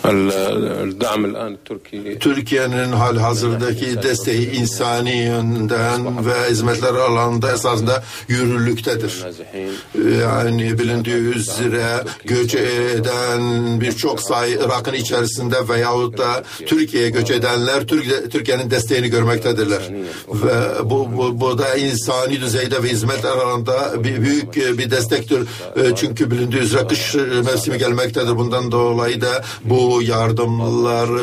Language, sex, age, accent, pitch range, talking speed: Turkish, male, 60-79, native, 120-140 Hz, 95 wpm